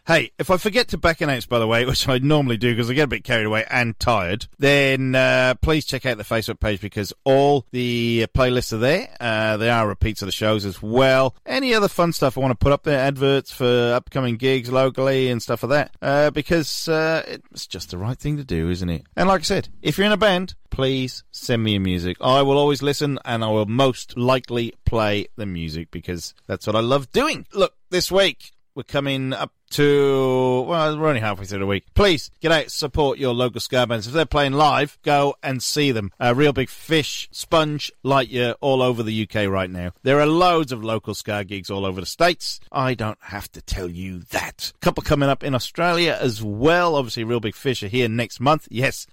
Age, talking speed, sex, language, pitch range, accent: 30-49, 225 wpm, male, English, 110-145 Hz, British